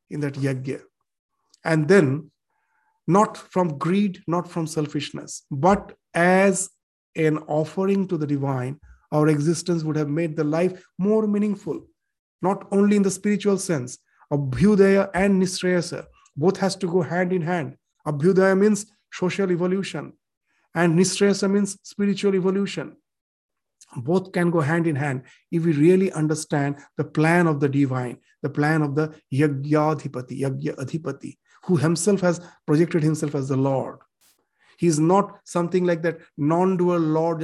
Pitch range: 150-190 Hz